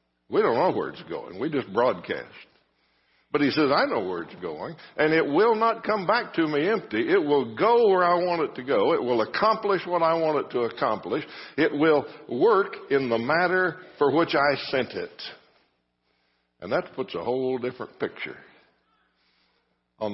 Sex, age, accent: male, 60-79, American